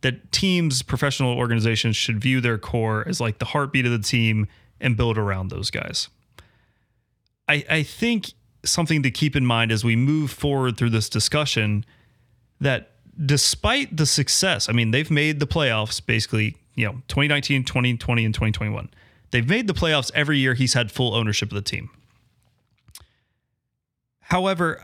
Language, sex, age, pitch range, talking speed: English, male, 30-49, 110-140 Hz, 160 wpm